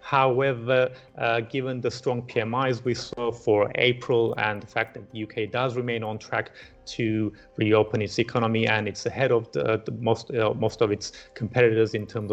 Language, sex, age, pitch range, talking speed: English, male, 30-49, 110-125 Hz, 185 wpm